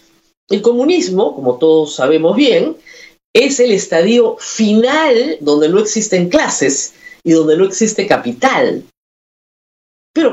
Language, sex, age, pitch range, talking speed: Spanish, female, 50-69, 165-280 Hz, 115 wpm